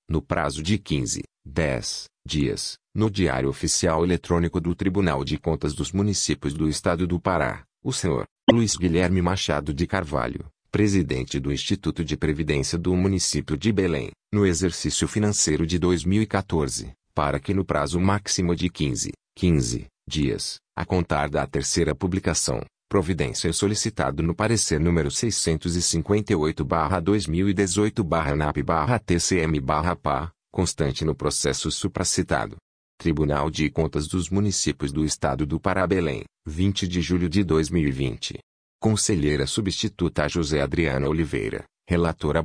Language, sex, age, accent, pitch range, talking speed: Portuguese, male, 40-59, Brazilian, 75-95 Hz, 120 wpm